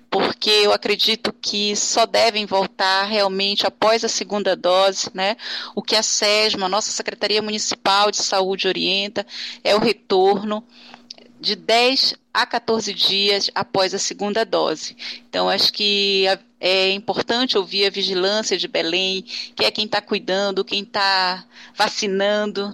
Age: 40-59